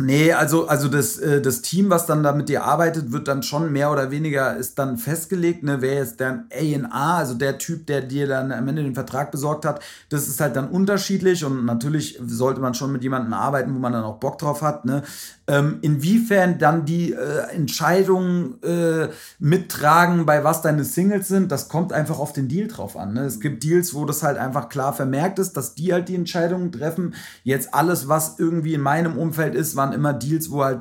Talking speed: 210 wpm